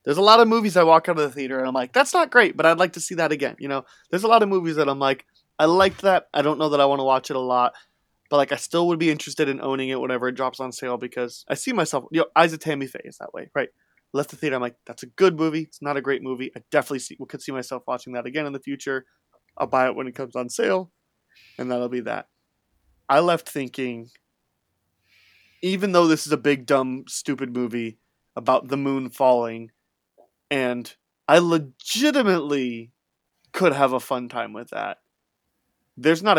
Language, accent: English, American